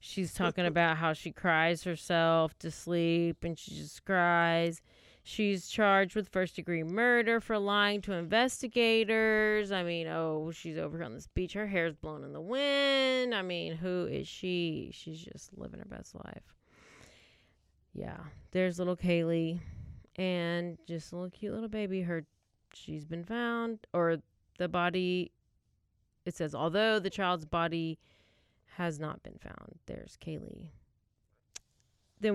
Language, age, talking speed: English, 30-49, 145 wpm